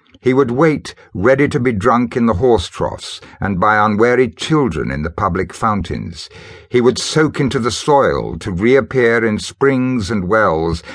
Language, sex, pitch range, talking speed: English, male, 95-130 Hz, 170 wpm